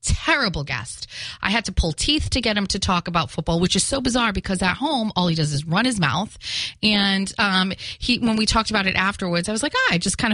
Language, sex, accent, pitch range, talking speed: English, female, American, 150-195 Hz, 255 wpm